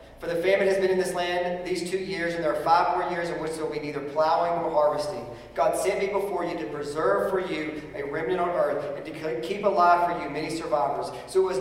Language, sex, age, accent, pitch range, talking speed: English, male, 40-59, American, 145-195 Hz, 260 wpm